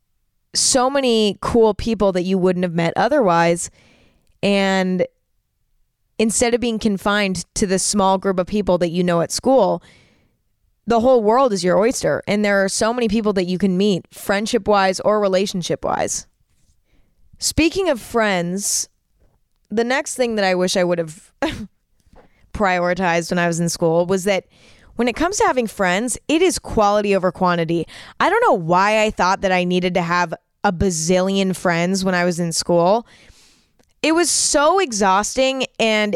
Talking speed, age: 170 wpm, 20-39